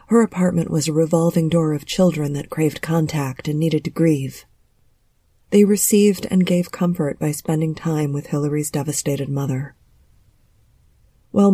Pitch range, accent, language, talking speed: 145-180 Hz, American, English, 145 wpm